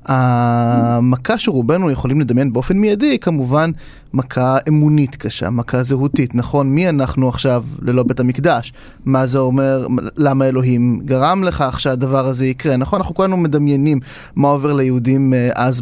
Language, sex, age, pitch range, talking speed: Hebrew, male, 30-49, 130-170 Hz, 145 wpm